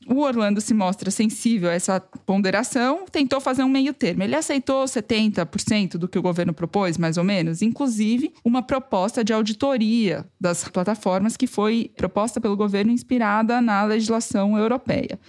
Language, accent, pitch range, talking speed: Portuguese, Brazilian, 205-260 Hz, 155 wpm